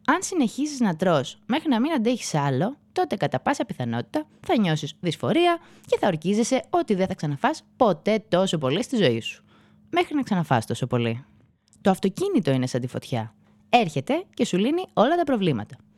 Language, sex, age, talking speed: Greek, female, 20-39, 175 wpm